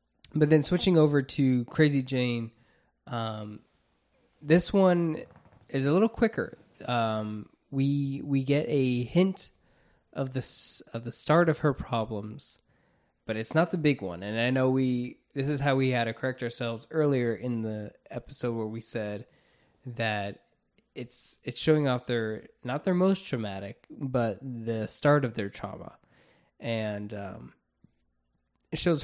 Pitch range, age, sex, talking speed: 110-135 Hz, 20-39, male, 150 wpm